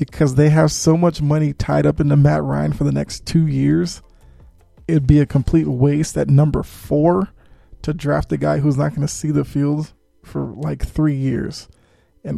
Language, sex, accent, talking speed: English, male, American, 195 wpm